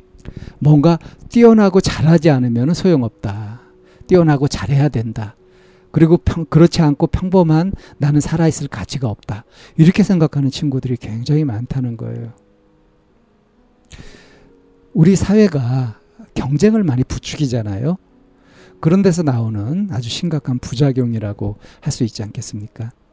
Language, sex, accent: Korean, male, native